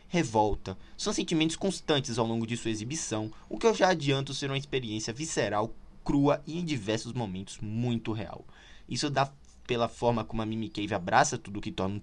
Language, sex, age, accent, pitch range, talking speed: Portuguese, male, 20-39, Brazilian, 105-145 Hz, 190 wpm